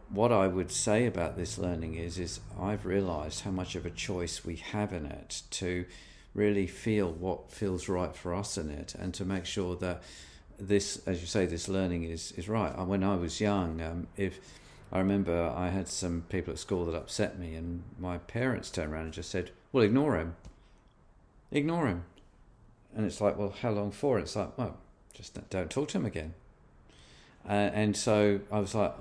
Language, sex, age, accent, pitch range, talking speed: English, male, 50-69, British, 85-105 Hz, 200 wpm